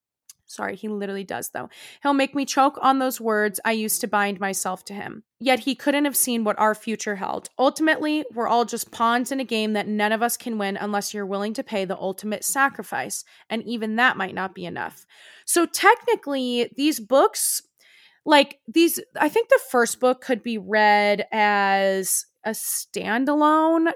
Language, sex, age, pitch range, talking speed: English, female, 20-39, 210-260 Hz, 185 wpm